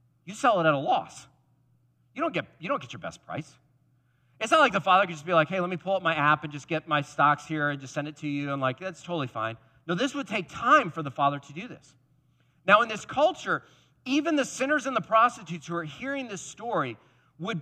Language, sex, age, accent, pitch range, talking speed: English, male, 40-59, American, 125-175 Hz, 255 wpm